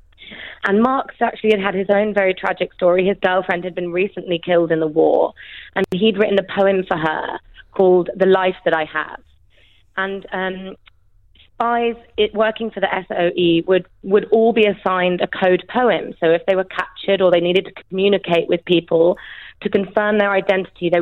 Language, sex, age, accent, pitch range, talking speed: English, female, 30-49, British, 175-200 Hz, 190 wpm